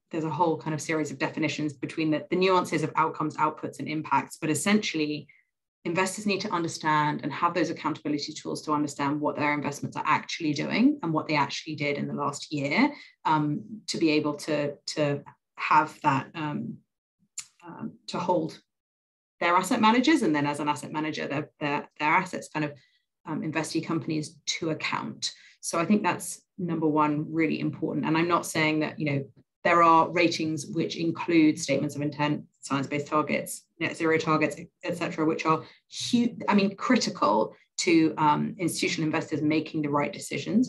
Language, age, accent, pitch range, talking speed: English, 30-49, British, 150-185 Hz, 175 wpm